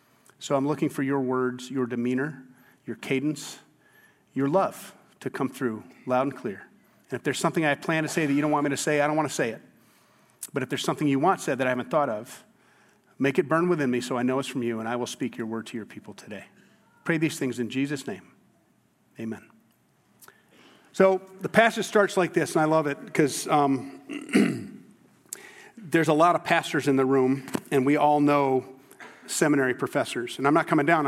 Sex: male